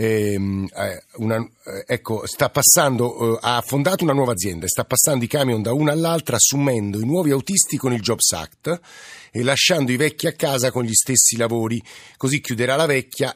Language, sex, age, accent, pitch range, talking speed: Italian, male, 50-69, native, 110-135 Hz, 185 wpm